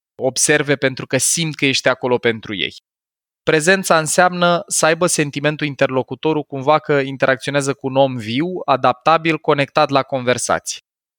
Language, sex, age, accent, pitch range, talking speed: Romanian, male, 20-39, native, 125-160 Hz, 140 wpm